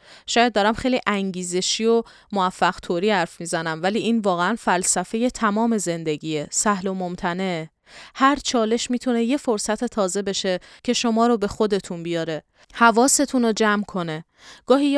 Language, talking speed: Persian, 140 wpm